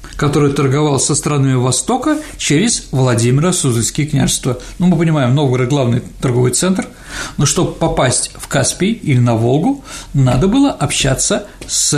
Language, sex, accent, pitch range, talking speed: Russian, male, native, 130-185 Hz, 145 wpm